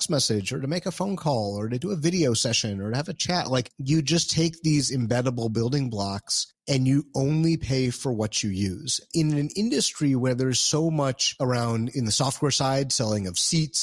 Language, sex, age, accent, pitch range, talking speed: English, male, 30-49, American, 110-140 Hz, 215 wpm